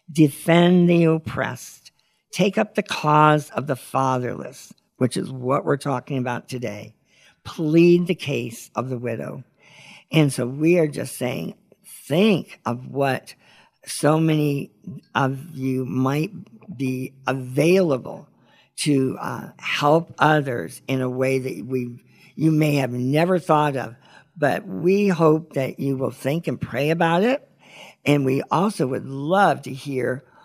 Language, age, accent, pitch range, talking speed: English, 50-69, American, 130-165 Hz, 140 wpm